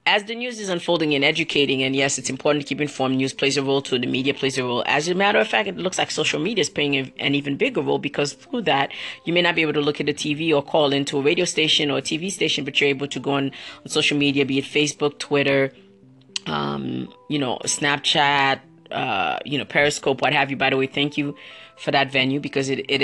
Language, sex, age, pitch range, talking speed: English, female, 30-49, 135-155 Hz, 255 wpm